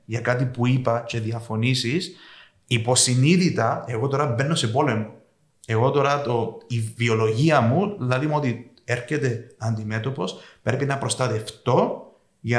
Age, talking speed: 30-49, 125 wpm